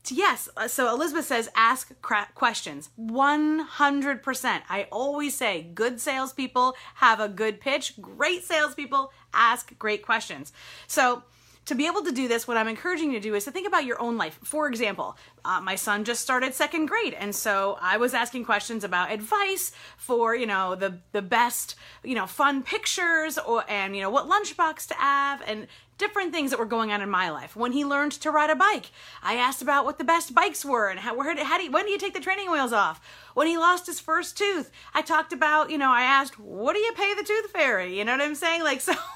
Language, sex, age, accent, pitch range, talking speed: English, female, 30-49, American, 235-330 Hz, 220 wpm